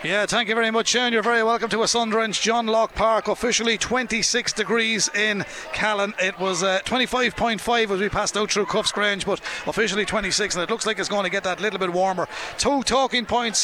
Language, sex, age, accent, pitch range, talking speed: English, male, 30-49, Irish, 190-225 Hz, 210 wpm